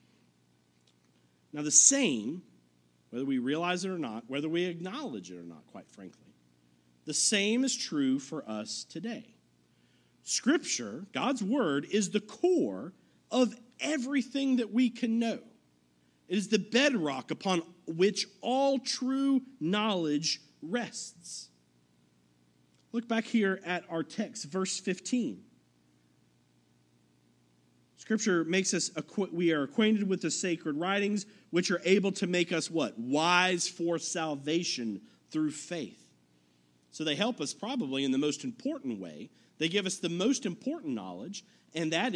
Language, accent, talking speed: English, American, 135 wpm